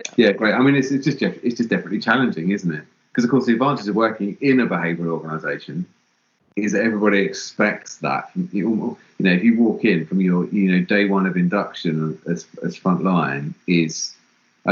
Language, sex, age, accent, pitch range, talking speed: English, male, 30-49, British, 85-110 Hz, 190 wpm